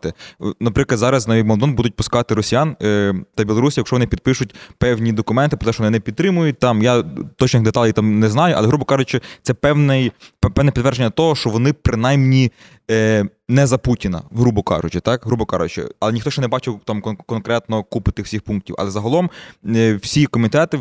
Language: Ukrainian